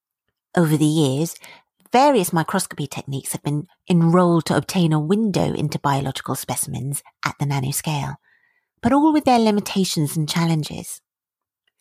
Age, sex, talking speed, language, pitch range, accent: 40-59, female, 130 wpm, English, 155-210 Hz, British